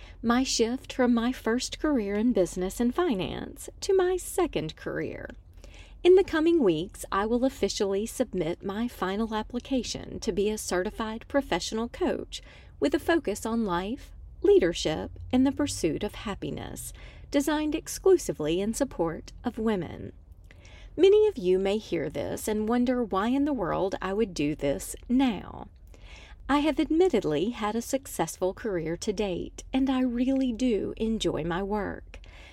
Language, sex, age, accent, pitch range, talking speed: English, female, 40-59, American, 195-270 Hz, 150 wpm